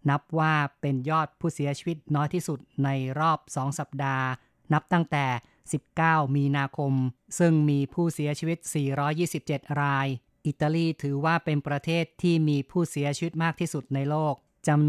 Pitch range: 140-155 Hz